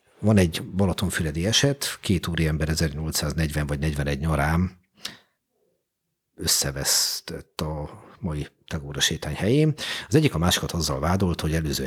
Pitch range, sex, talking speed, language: 75-90 Hz, male, 120 wpm, Hungarian